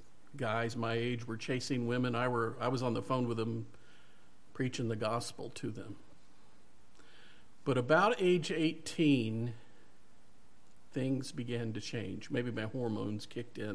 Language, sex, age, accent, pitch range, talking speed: English, male, 50-69, American, 110-145 Hz, 145 wpm